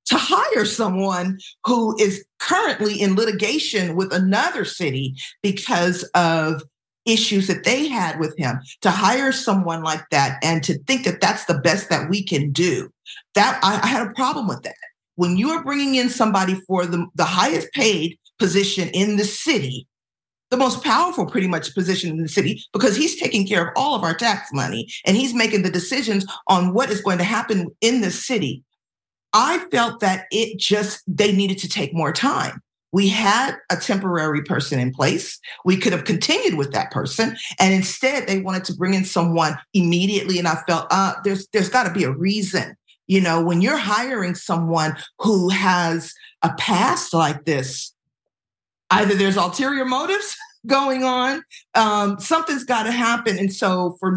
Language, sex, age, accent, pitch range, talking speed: English, female, 40-59, American, 170-220 Hz, 180 wpm